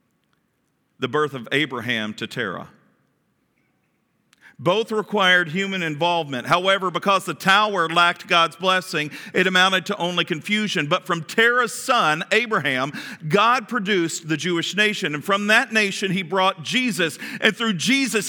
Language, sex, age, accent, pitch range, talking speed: English, male, 40-59, American, 150-210 Hz, 140 wpm